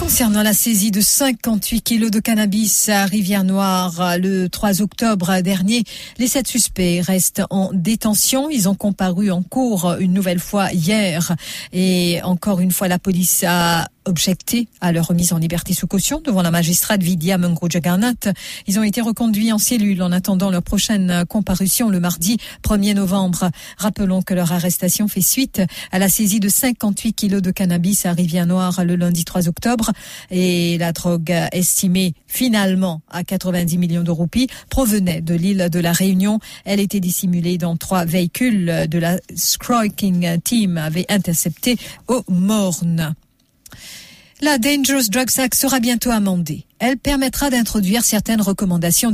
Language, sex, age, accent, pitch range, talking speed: English, female, 50-69, French, 175-220 Hz, 155 wpm